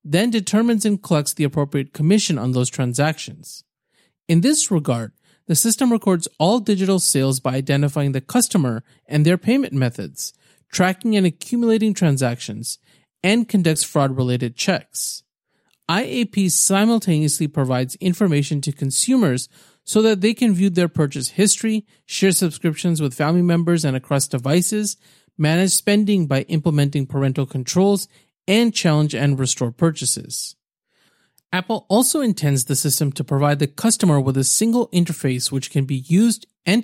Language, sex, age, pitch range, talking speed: English, male, 40-59, 140-200 Hz, 140 wpm